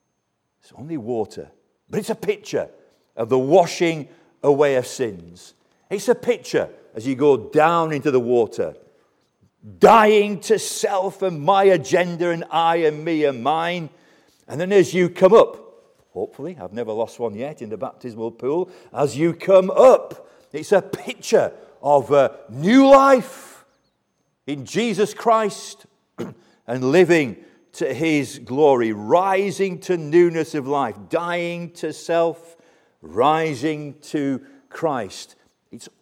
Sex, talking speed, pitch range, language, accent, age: male, 135 wpm, 145-220 Hz, English, British, 50-69